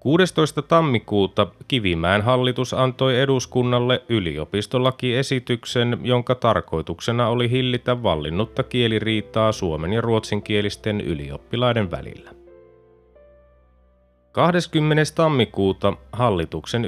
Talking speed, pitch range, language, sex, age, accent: 75 wpm, 105-125 Hz, Finnish, male, 30-49, native